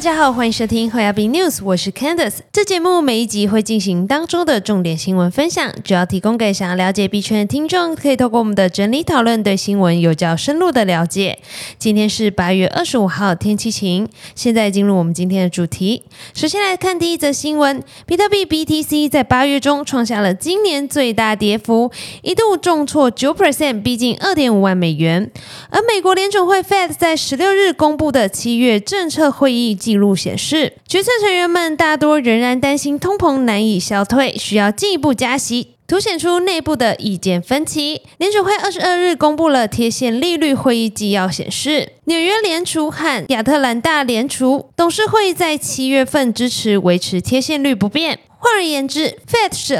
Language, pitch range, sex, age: Chinese, 215-325 Hz, female, 20-39